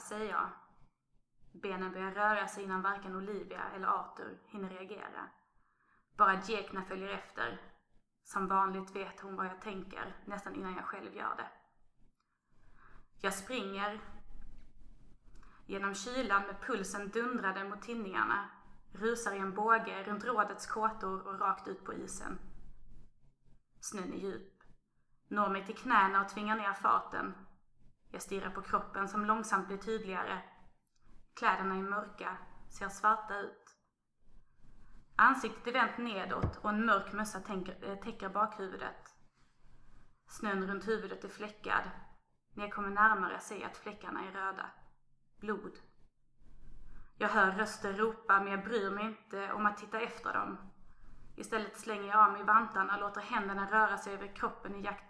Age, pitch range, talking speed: 20-39, 195-215 Hz, 145 wpm